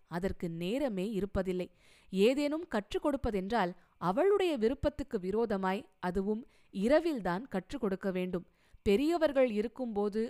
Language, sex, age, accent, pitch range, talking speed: Tamil, female, 20-39, native, 190-260 Hz, 95 wpm